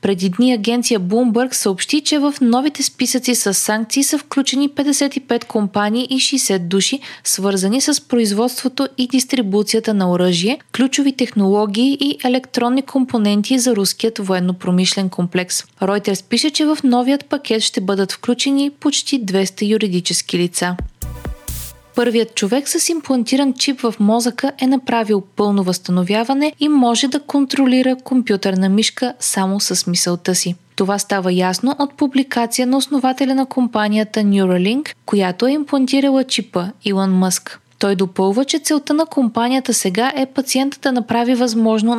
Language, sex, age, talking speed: Bulgarian, female, 20-39, 135 wpm